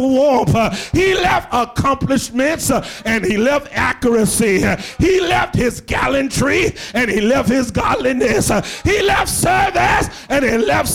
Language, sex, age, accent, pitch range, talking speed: English, male, 50-69, American, 205-275 Hz, 125 wpm